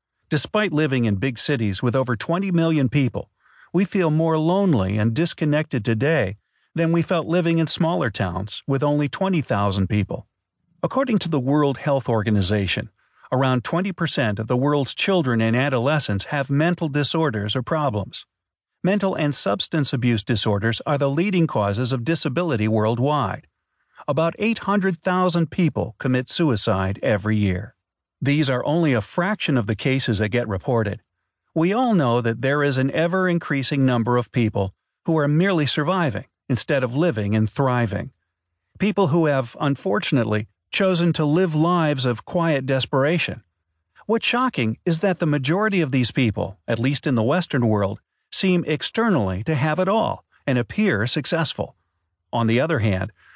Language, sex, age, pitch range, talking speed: English, male, 40-59, 115-165 Hz, 155 wpm